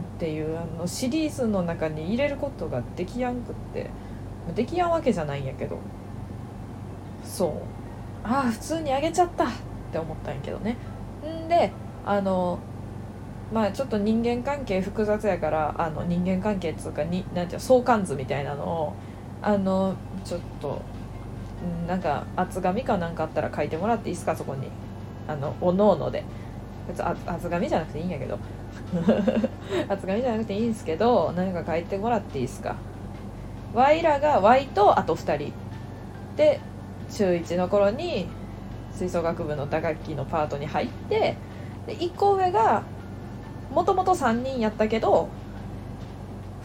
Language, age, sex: Japanese, 20-39, female